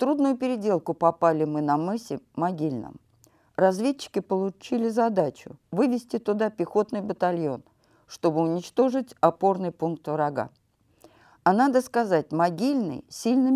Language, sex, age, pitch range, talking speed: Russian, female, 50-69, 165-220 Hz, 105 wpm